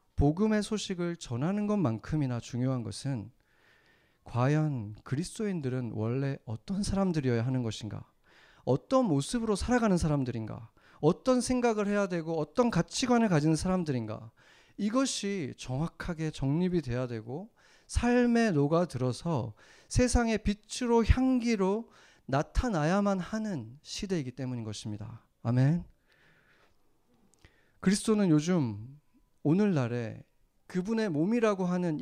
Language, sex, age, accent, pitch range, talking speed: English, male, 40-59, Korean, 125-190 Hz, 90 wpm